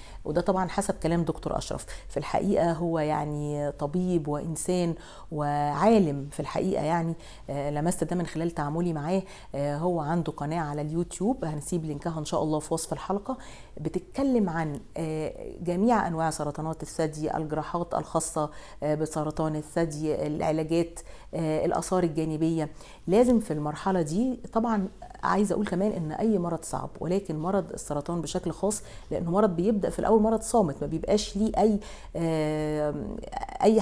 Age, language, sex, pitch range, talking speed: 40-59, English, female, 160-200 Hz, 135 wpm